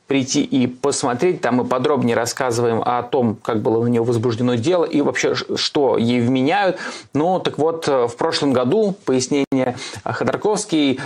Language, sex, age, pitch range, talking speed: Russian, male, 20-39, 120-145 Hz, 150 wpm